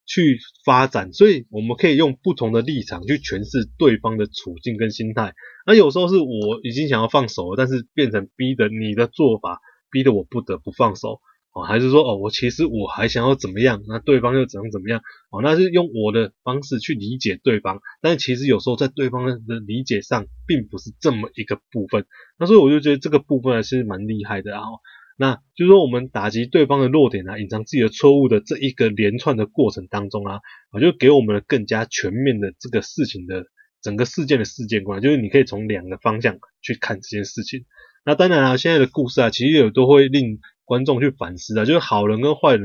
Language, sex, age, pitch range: Chinese, male, 20-39, 105-140 Hz